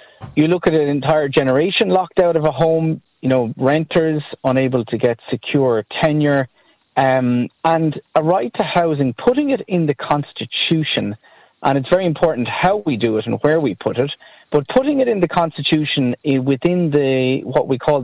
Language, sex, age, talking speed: English, male, 30-49, 180 wpm